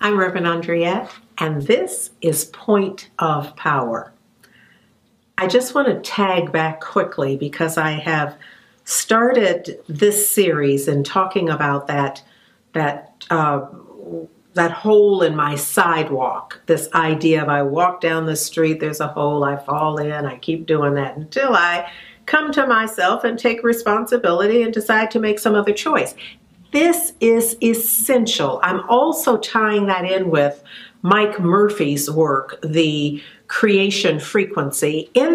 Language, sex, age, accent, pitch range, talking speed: English, female, 50-69, American, 160-230 Hz, 135 wpm